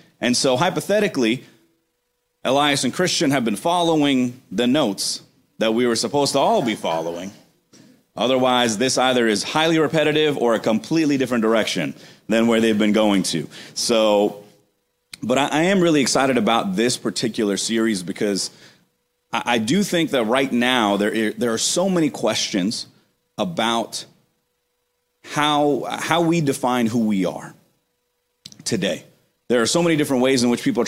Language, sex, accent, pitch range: English, male, American, 110-145 Hz